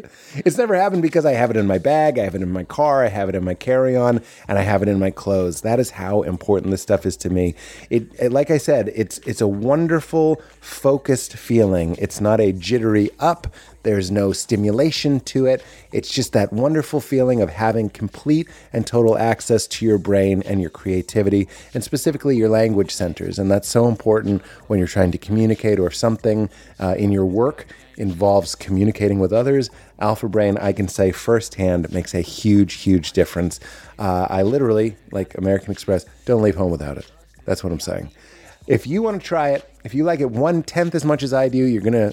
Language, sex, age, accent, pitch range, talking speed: English, male, 30-49, American, 100-135 Hz, 210 wpm